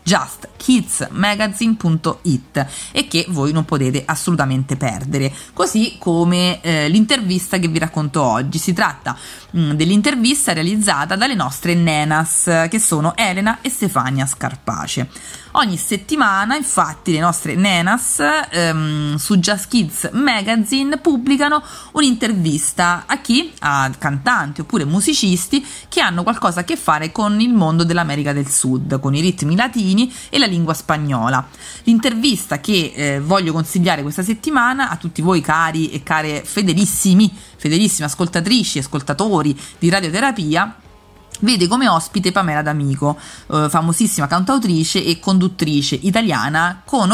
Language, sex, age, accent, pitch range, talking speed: Italian, female, 30-49, native, 150-215 Hz, 125 wpm